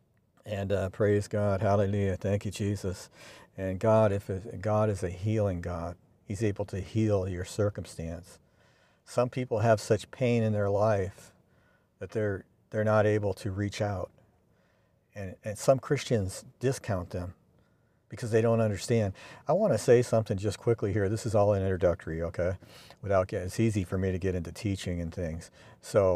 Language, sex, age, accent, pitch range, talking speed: English, male, 50-69, American, 95-110 Hz, 170 wpm